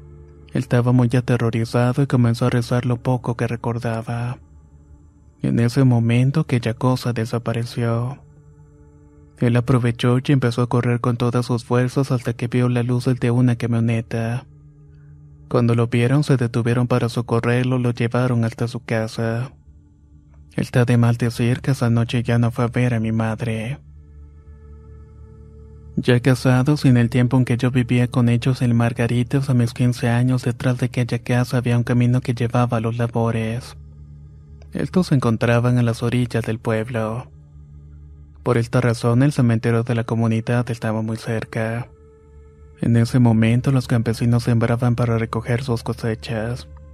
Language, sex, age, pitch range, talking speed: Spanish, male, 30-49, 110-125 Hz, 155 wpm